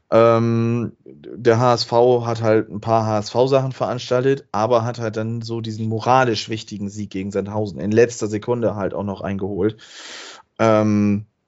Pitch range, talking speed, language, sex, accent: 110-125 Hz, 145 wpm, German, male, German